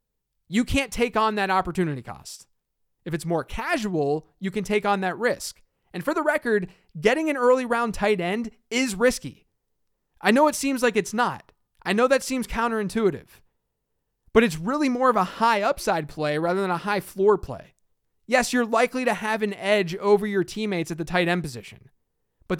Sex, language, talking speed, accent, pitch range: male, English, 190 wpm, American, 170-230 Hz